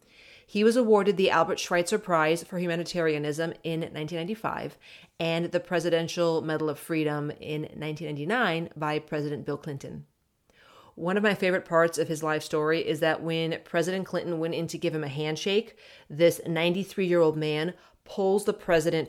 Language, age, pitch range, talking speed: English, 30-49, 155-175 Hz, 155 wpm